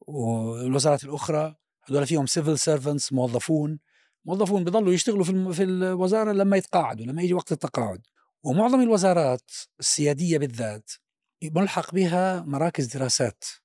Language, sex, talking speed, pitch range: Arabic, male, 120 wpm, 140-190 Hz